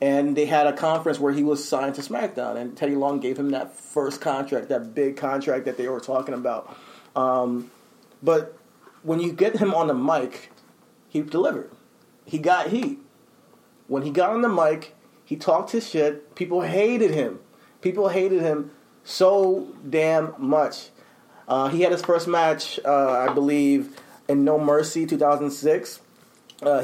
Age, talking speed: 30-49, 170 wpm